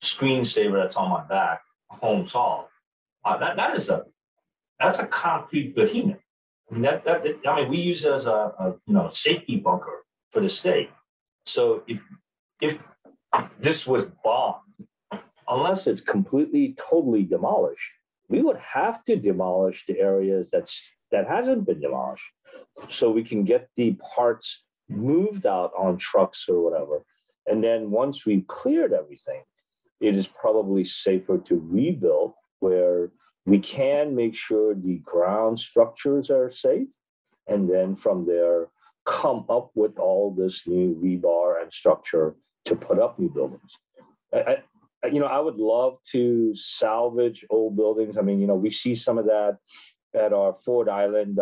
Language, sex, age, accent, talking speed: English, male, 40-59, American, 155 wpm